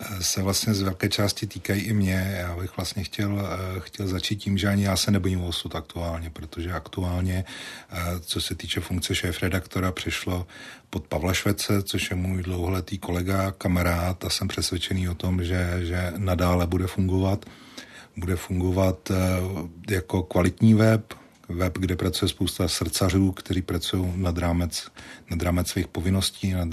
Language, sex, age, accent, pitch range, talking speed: Czech, male, 40-59, native, 90-100 Hz, 155 wpm